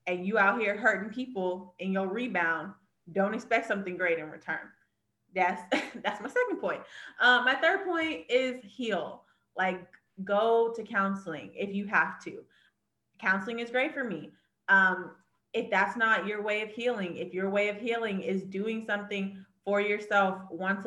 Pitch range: 185-215 Hz